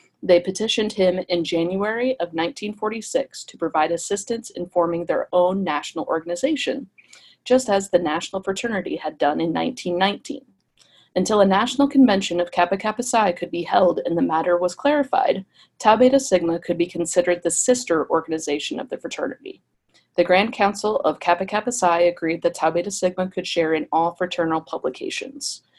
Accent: American